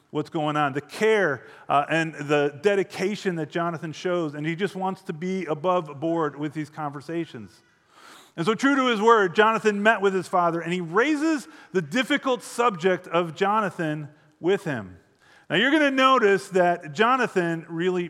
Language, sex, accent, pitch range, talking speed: English, male, American, 145-195 Hz, 170 wpm